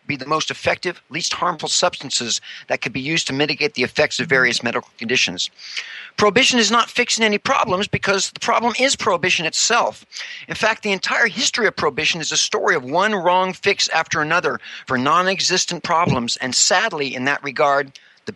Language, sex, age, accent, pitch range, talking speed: English, male, 50-69, American, 150-210 Hz, 185 wpm